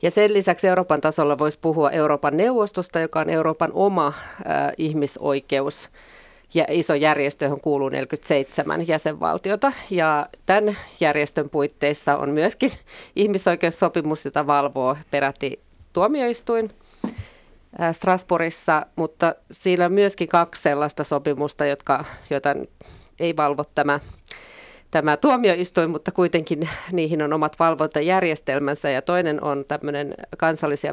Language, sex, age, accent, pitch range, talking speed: Finnish, female, 30-49, native, 145-180 Hz, 115 wpm